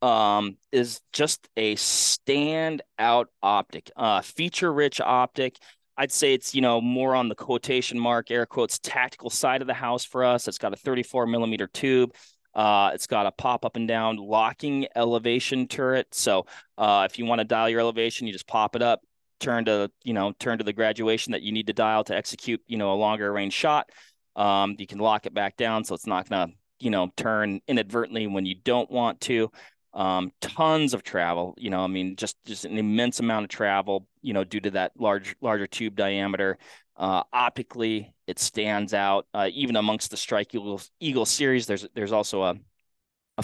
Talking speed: 200 wpm